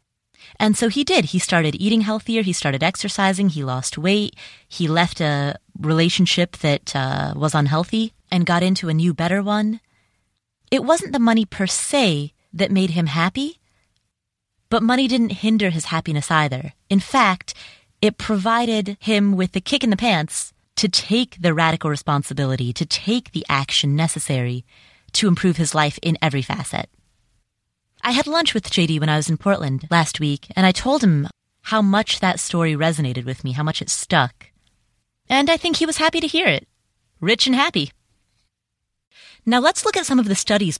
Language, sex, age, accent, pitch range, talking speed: English, female, 30-49, American, 150-210 Hz, 180 wpm